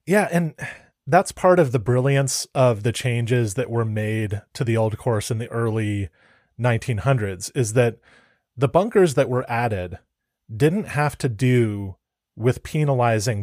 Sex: male